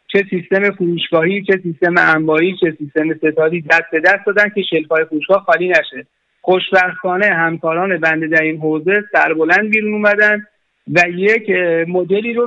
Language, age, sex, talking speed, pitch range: Persian, 50-69, male, 160 wpm, 165-200 Hz